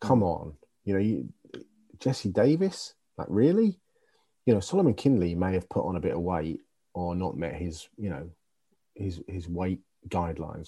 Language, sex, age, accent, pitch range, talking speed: English, male, 30-49, British, 85-130 Hz, 175 wpm